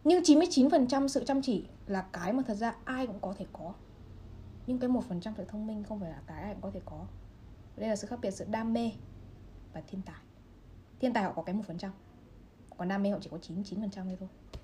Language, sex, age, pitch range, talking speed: Vietnamese, female, 20-39, 185-255 Hz, 240 wpm